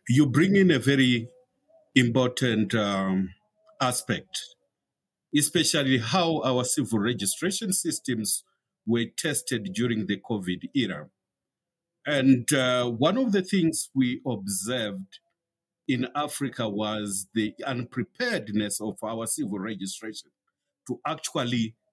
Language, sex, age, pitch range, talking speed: English, male, 50-69, 115-170 Hz, 105 wpm